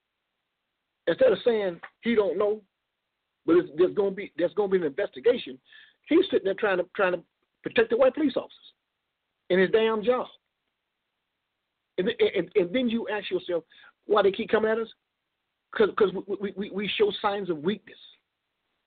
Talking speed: 175 wpm